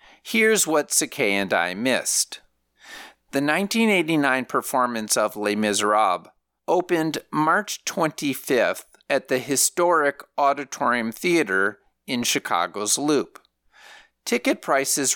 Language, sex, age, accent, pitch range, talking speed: English, male, 50-69, American, 115-175 Hz, 100 wpm